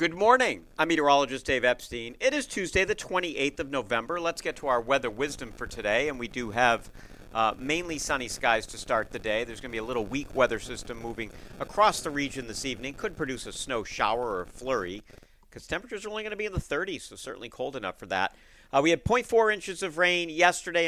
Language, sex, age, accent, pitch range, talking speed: English, male, 50-69, American, 110-150 Hz, 225 wpm